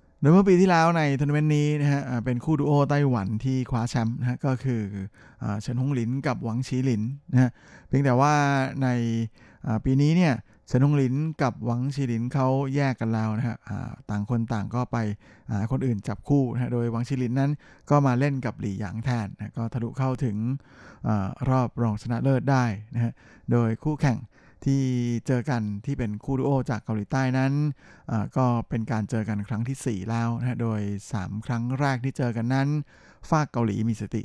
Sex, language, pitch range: male, Thai, 115-135 Hz